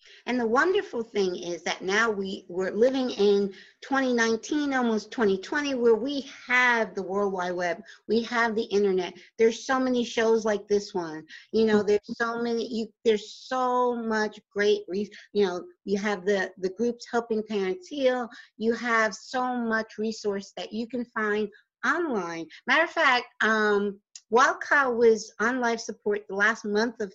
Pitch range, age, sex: 195-235 Hz, 50-69, female